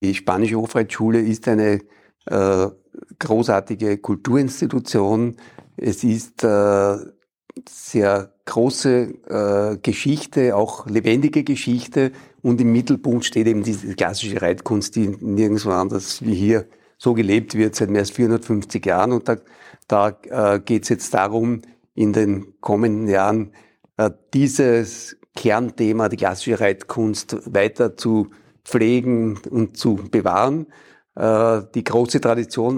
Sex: male